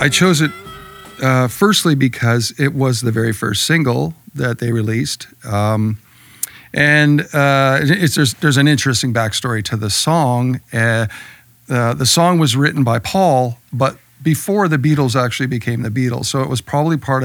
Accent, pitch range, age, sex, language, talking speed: American, 120-150 Hz, 50-69, male, English, 165 wpm